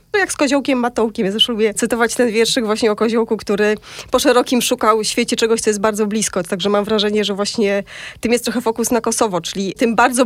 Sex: female